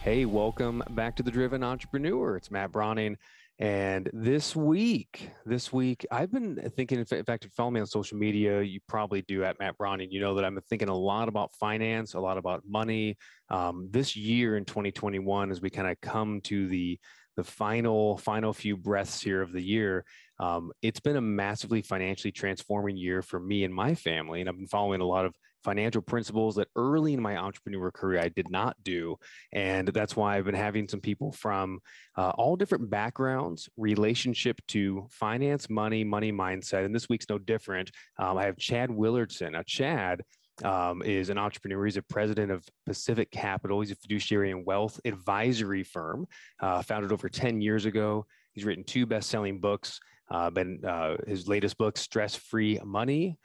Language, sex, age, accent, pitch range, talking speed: English, male, 20-39, American, 95-115 Hz, 190 wpm